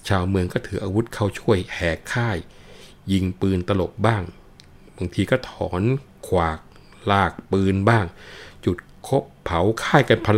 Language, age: Thai, 60-79